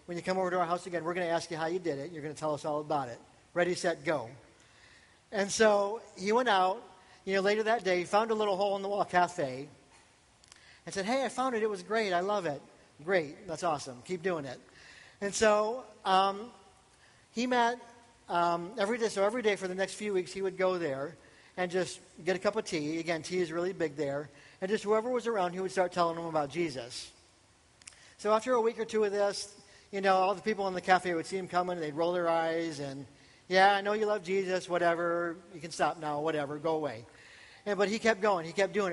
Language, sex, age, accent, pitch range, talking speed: English, male, 50-69, American, 165-200 Hz, 240 wpm